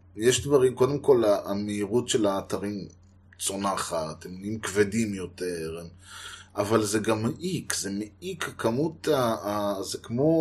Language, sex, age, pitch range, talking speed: Hebrew, male, 20-39, 100-130 Hz, 115 wpm